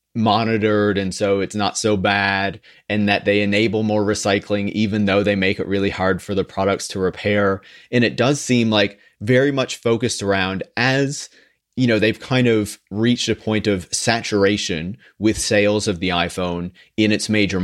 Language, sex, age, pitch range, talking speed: English, male, 30-49, 100-110 Hz, 180 wpm